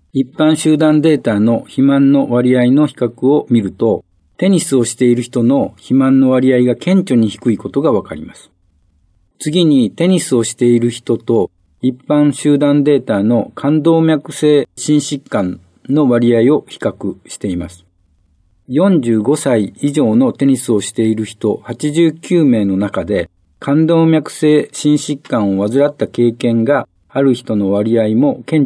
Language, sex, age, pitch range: Japanese, male, 50-69, 110-145 Hz